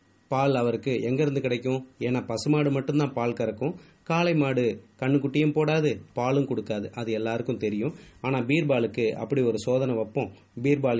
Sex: male